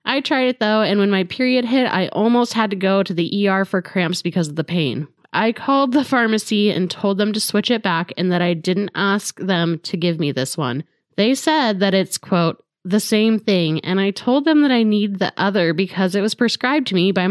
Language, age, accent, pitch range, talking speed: English, 20-39, American, 175-220 Hz, 240 wpm